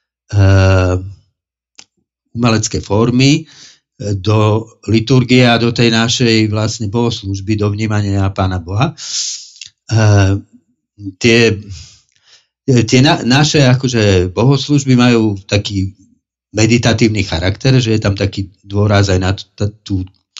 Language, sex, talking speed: Slovak, male, 105 wpm